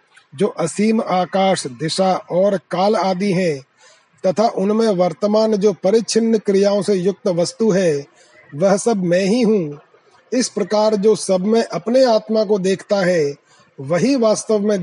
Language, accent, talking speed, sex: Hindi, native, 145 wpm, male